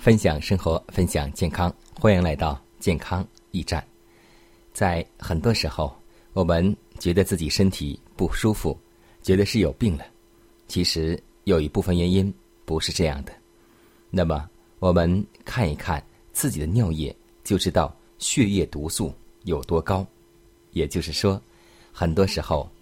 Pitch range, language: 80-100 Hz, Chinese